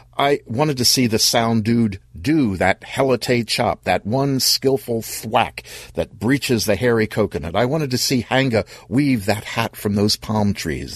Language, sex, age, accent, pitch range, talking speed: English, male, 60-79, American, 95-125 Hz, 175 wpm